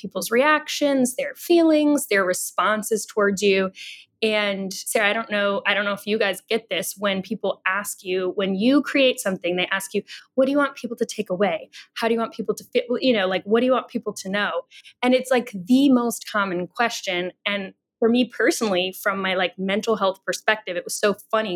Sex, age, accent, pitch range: female, 10-29, American, 190-235 Hz